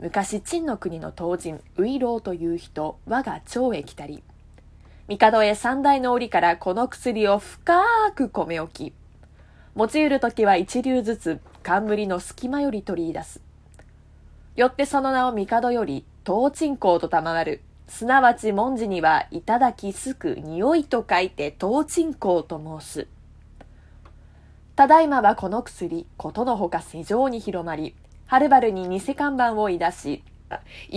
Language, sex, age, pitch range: Japanese, female, 20-39, 160-250 Hz